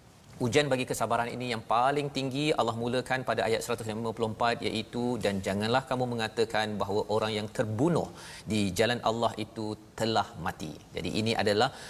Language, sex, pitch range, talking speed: Malayalam, male, 110-135 Hz, 150 wpm